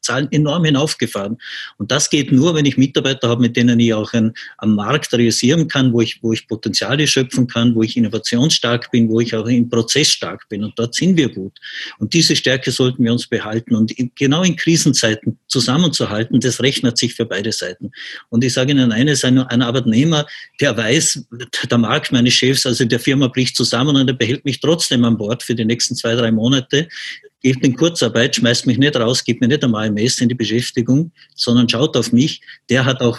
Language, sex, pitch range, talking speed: German, male, 115-135 Hz, 205 wpm